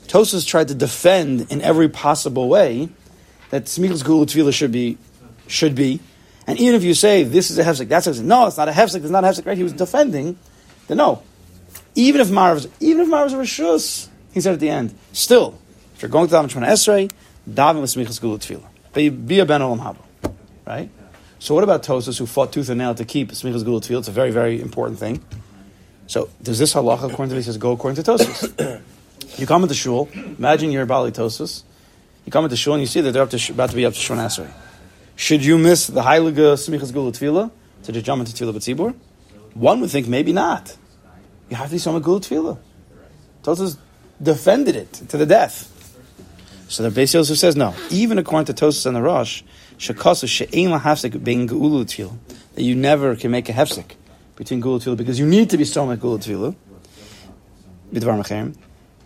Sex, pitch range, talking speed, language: male, 115-160 Hz, 200 wpm, English